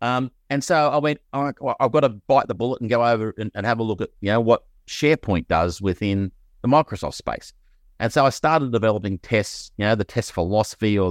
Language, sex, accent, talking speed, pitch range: English, male, Australian, 240 wpm, 95-125 Hz